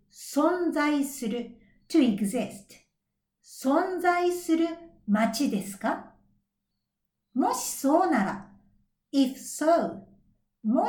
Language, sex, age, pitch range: Japanese, female, 60-79, 220-320 Hz